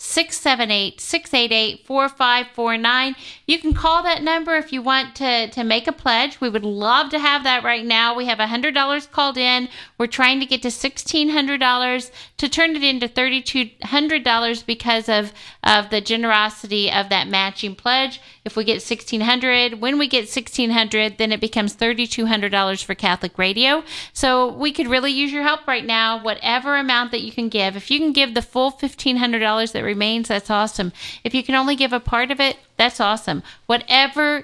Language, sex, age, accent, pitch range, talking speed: English, female, 40-59, American, 220-270 Hz, 170 wpm